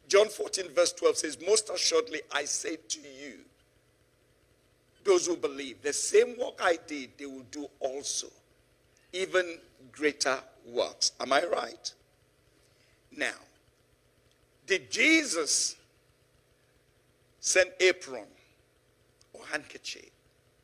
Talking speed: 105 wpm